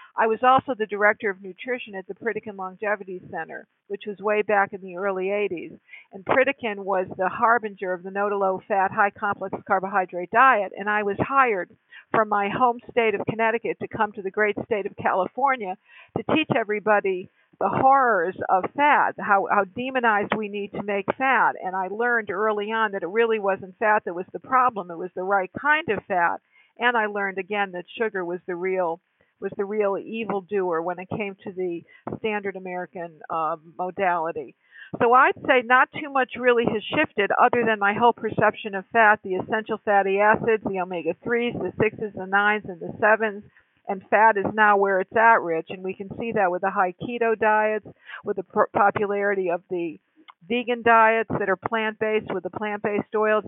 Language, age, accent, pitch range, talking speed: English, 50-69, American, 190-225 Hz, 190 wpm